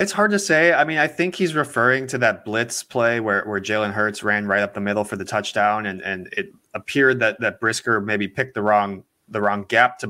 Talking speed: 245 wpm